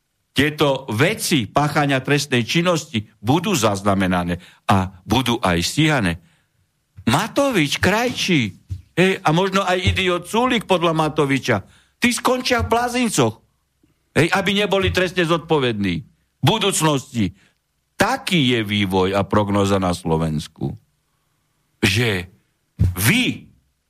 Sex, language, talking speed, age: male, Slovak, 100 wpm, 60-79